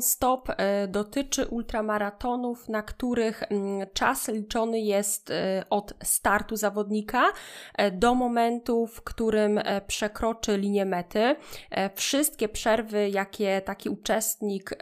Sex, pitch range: female, 190-220 Hz